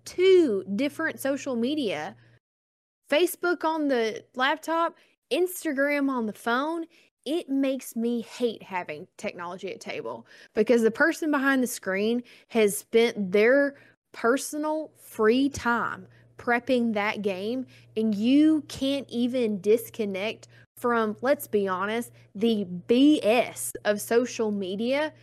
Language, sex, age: English, female, 20-39